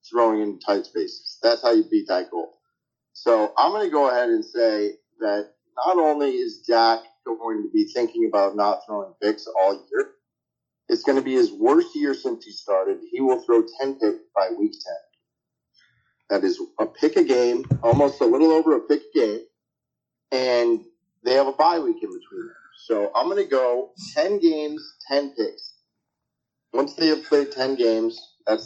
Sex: male